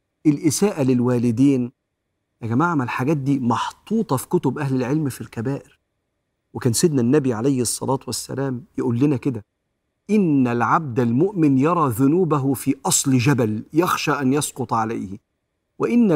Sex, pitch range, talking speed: male, 120-155 Hz, 135 wpm